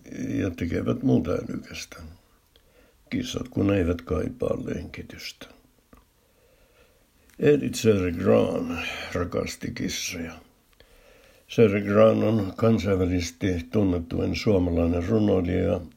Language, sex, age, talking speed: Finnish, male, 60-79, 75 wpm